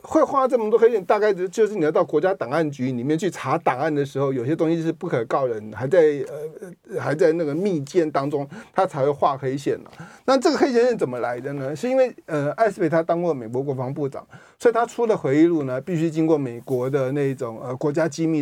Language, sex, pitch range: Chinese, male, 140-220 Hz